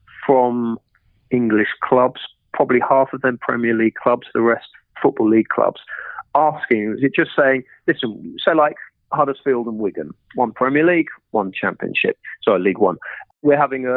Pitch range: 110-130 Hz